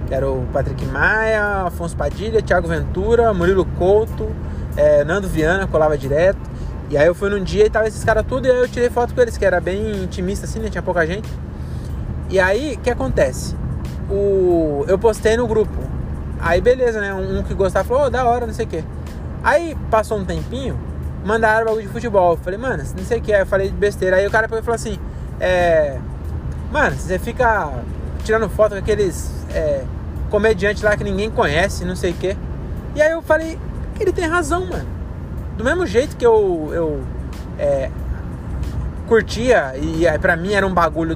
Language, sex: Portuguese, male